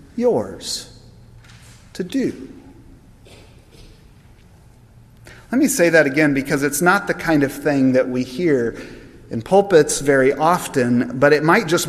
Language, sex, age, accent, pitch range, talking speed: English, male, 40-59, American, 120-170 Hz, 130 wpm